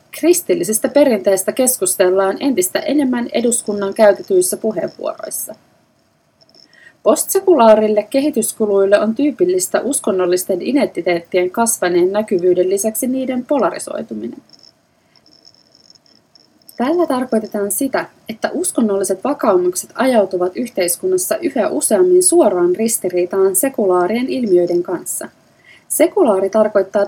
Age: 30-49